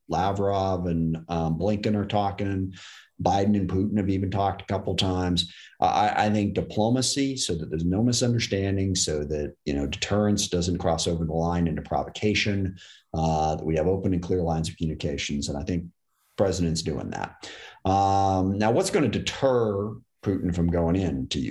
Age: 40-59